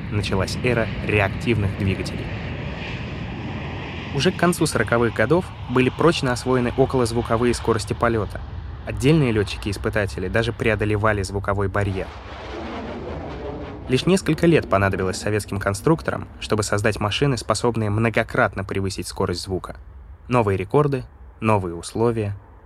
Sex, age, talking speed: male, 20-39, 105 wpm